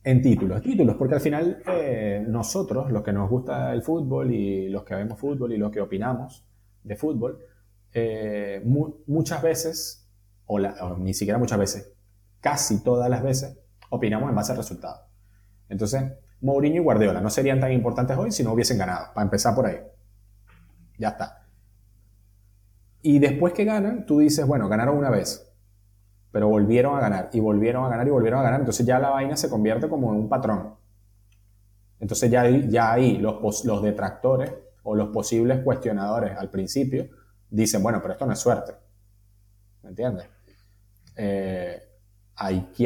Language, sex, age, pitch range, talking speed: Spanish, male, 30-49, 100-125 Hz, 165 wpm